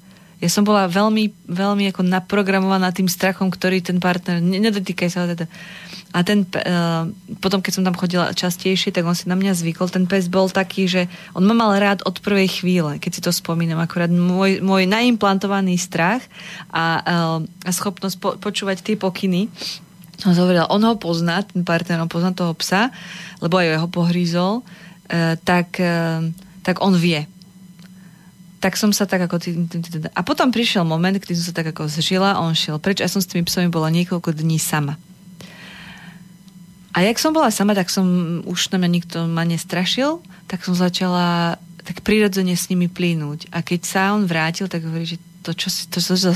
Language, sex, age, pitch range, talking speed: Slovak, female, 20-39, 170-190 Hz, 180 wpm